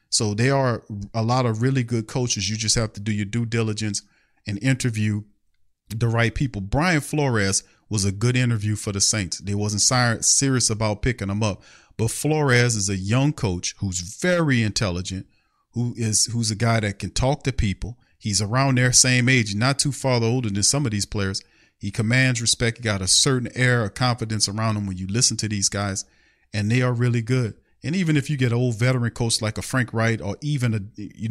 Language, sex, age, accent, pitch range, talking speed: English, male, 40-59, American, 100-125 Hz, 210 wpm